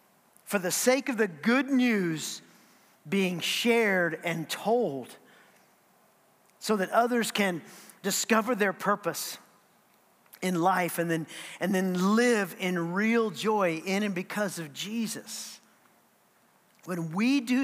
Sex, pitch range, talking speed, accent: male, 195-270 Hz, 120 wpm, American